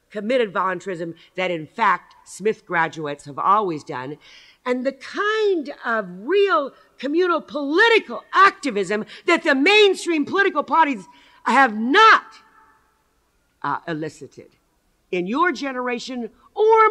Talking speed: 110 wpm